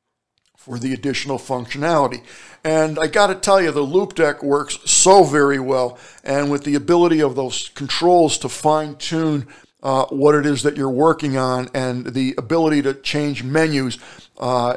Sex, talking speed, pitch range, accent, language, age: male, 165 wpm, 135-165 Hz, American, English, 60-79